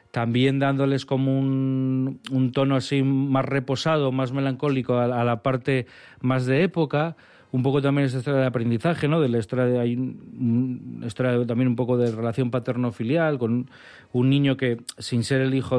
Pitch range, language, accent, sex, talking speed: 125-140 Hz, Spanish, Spanish, male, 180 wpm